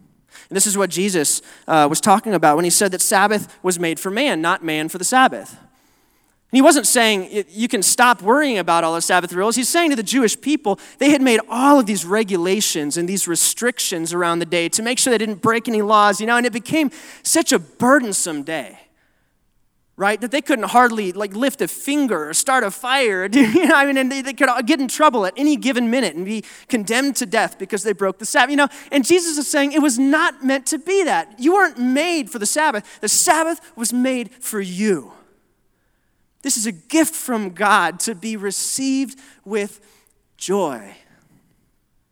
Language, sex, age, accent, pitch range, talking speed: English, male, 20-39, American, 195-270 Hz, 205 wpm